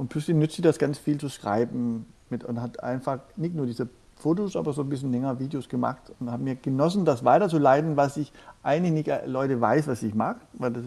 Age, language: 50-69, German